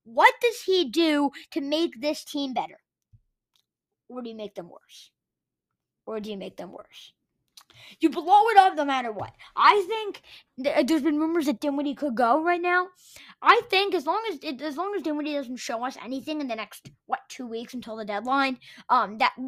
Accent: American